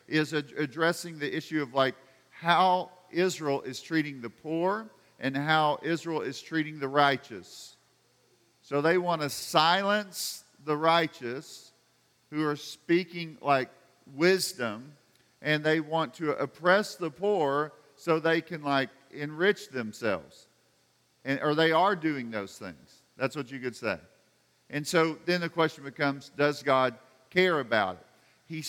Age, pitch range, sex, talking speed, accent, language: 50-69, 135-170 Hz, male, 140 wpm, American, English